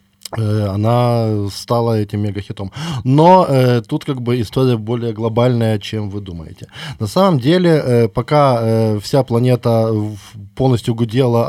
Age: 20-39